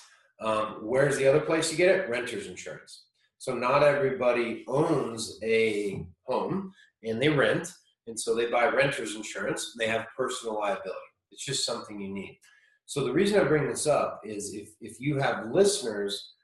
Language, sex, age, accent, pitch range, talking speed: English, male, 30-49, American, 110-160 Hz, 170 wpm